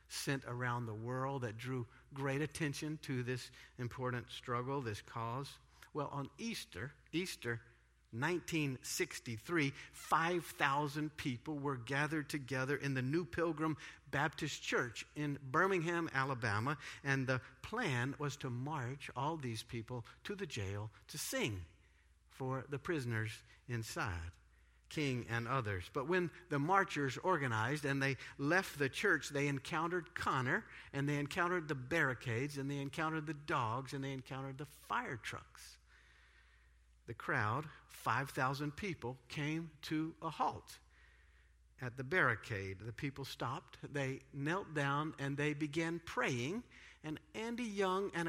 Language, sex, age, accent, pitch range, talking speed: English, male, 50-69, American, 120-155 Hz, 135 wpm